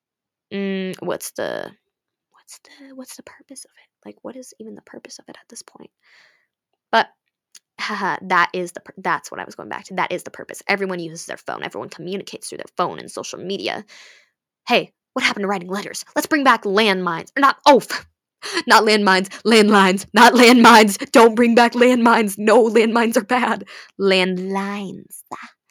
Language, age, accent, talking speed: English, 20-39, American, 175 wpm